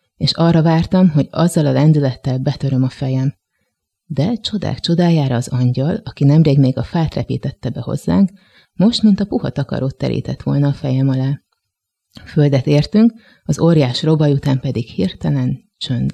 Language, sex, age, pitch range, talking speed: Hungarian, female, 30-49, 130-155 Hz, 155 wpm